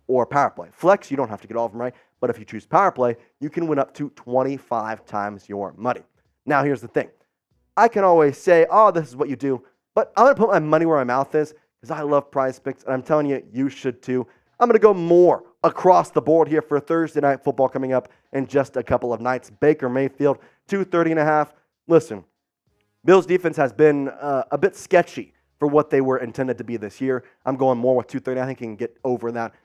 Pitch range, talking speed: 125-175 Hz, 245 wpm